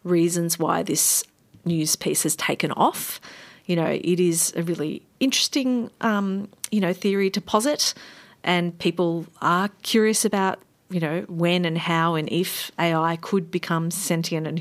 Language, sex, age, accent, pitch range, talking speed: English, female, 40-59, Australian, 160-185 Hz, 155 wpm